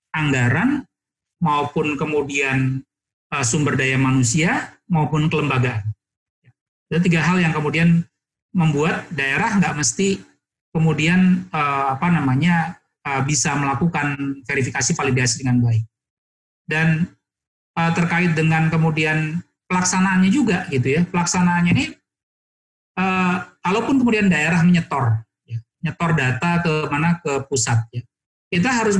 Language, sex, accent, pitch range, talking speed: Indonesian, male, native, 145-190 Hz, 100 wpm